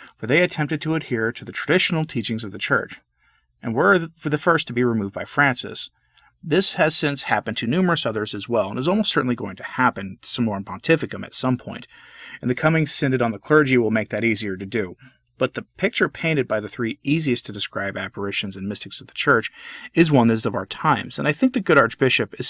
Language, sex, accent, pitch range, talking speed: English, male, American, 105-145 Hz, 230 wpm